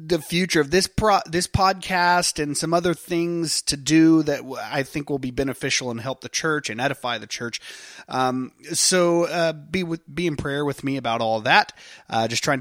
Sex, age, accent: male, 30-49, American